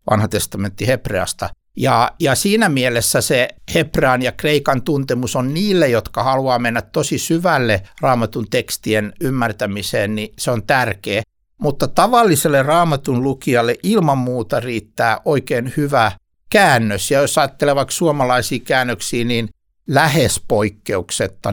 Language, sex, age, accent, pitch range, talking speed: Finnish, male, 60-79, native, 100-140 Hz, 125 wpm